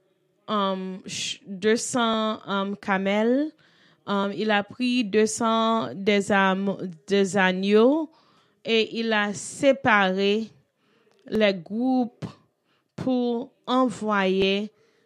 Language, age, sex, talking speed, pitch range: English, 20-39, female, 85 wpm, 190-225 Hz